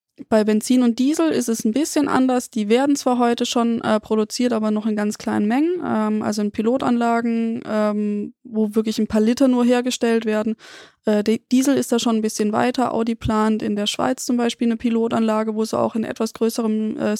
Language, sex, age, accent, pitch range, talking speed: German, female, 20-39, German, 215-245 Hz, 205 wpm